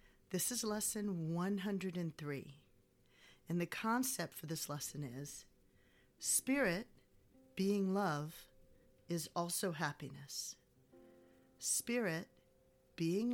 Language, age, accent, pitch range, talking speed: English, 40-59, American, 145-200 Hz, 85 wpm